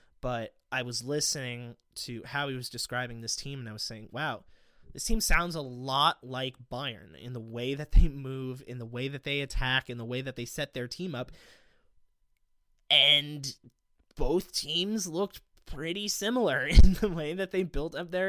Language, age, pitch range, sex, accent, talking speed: English, 20-39, 130-165 Hz, male, American, 190 wpm